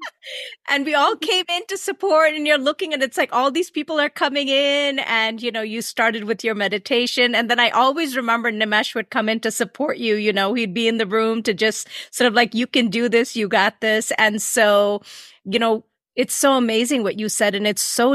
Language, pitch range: English, 215-250 Hz